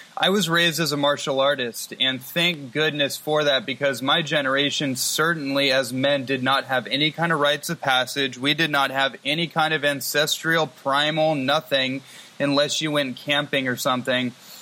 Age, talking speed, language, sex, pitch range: 20-39, 175 wpm, English, male, 135-155 Hz